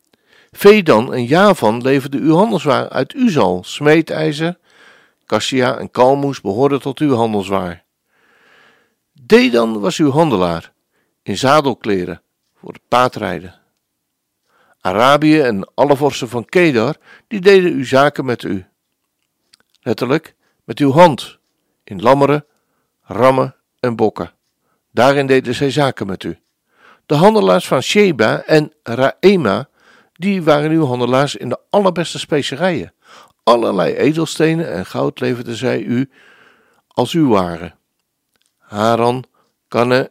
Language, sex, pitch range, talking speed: Dutch, male, 120-170 Hz, 115 wpm